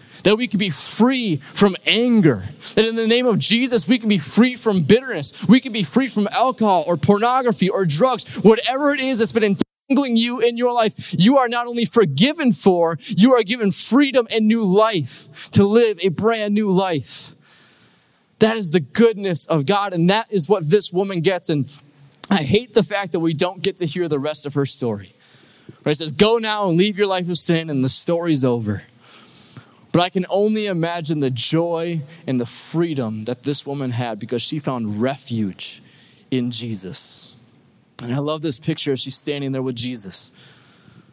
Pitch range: 130-210 Hz